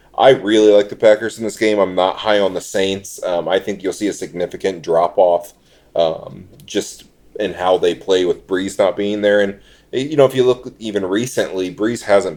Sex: male